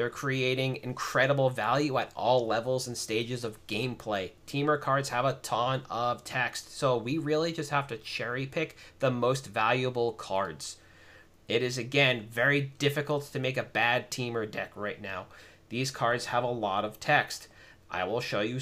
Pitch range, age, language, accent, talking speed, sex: 115-150 Hz, 30-49, English, American, 170 wpm, male